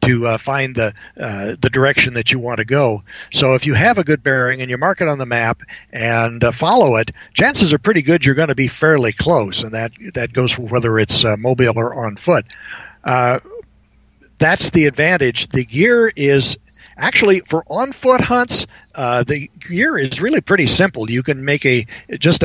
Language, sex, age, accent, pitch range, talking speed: English, male, 60-79, American, 120-155 Hz, 200 wpm